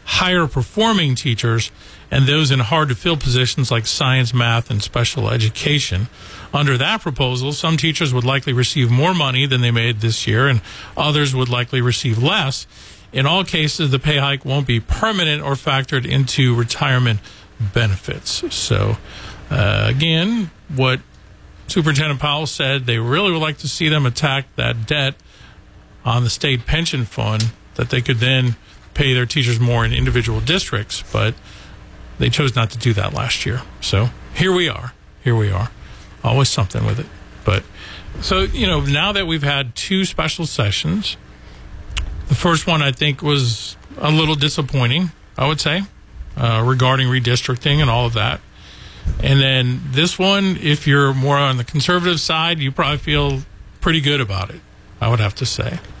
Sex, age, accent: male, 40-59, American